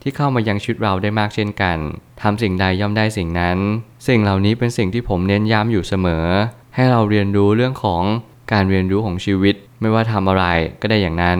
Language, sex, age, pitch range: Thai, male, 20-39, 95-115 Hz